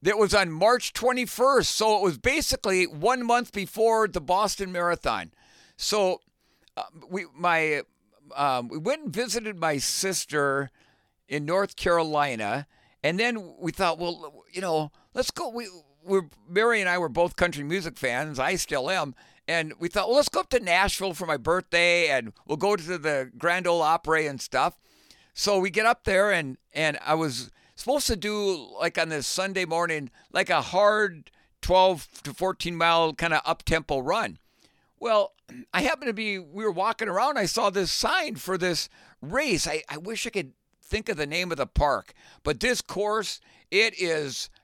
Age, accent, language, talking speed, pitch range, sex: 50-69, American, English, 180 wpm, 160-210 Hz, male